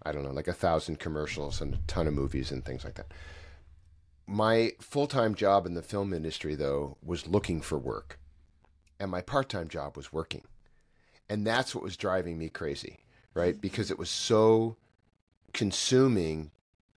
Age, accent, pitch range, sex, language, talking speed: 40-59, American, 80-110 Hz, male, English, 165 wpm